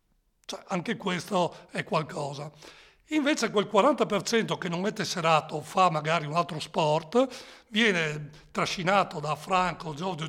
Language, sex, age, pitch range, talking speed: Italian, male, 60-79, 165-210 Hz, 130 wpm